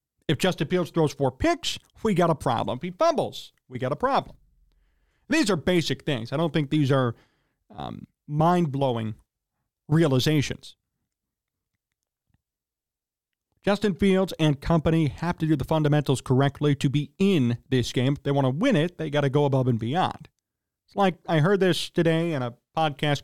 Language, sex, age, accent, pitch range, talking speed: English, male, 40-59, American, 135-185 Hz, 175 wpm